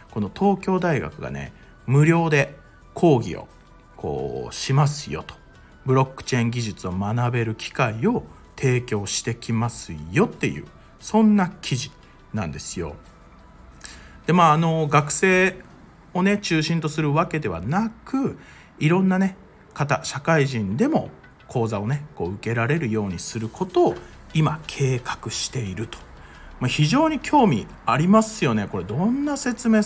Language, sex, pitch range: Japanese, male, 105-155 Hz